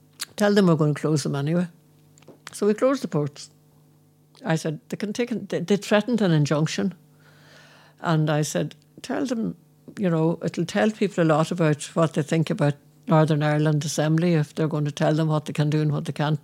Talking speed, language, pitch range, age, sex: 205 wpm, English, 150-205 Hz, 60-79, female